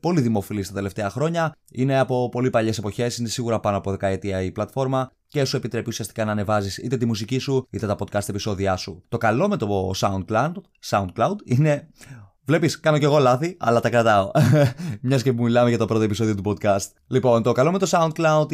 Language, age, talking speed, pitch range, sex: Greek, 20-39, 205 wpm, 105-135 Hz, male